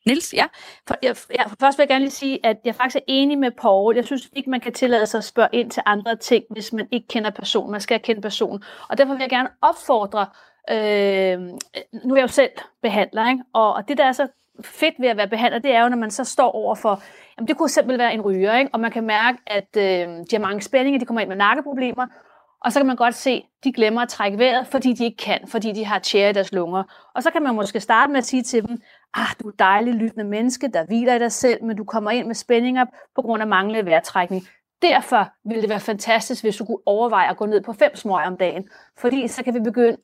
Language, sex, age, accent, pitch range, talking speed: Danish, female, 30-49, native, 215-260 Hz, 260 wpm